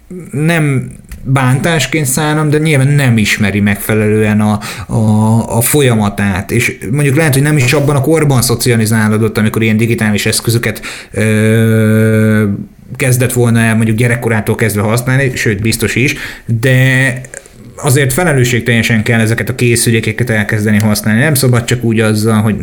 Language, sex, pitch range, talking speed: Hungarian, male, 110-130 Hz, 140 wpm